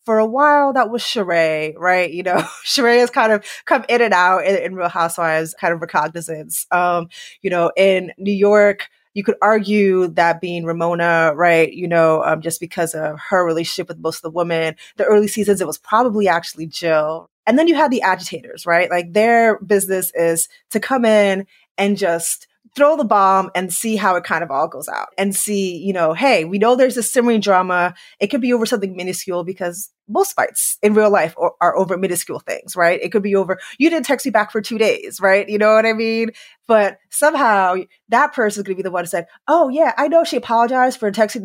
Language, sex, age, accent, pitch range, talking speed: English, female, 20-39, American, 175-225 Hz, 220 wpm